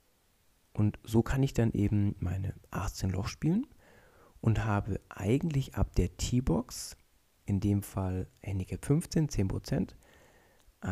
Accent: German